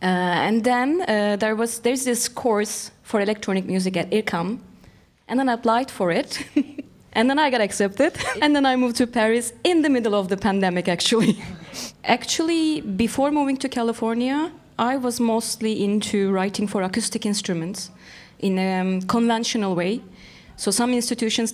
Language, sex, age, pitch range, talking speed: French, female, 20-39, 195-240 Hz, 160 wpm